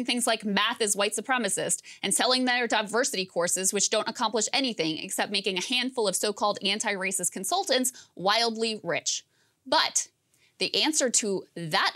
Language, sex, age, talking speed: English, female, 20-39, 150 wpm